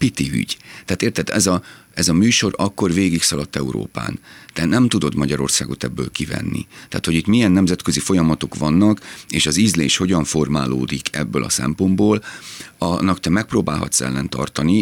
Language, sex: Hungarian, male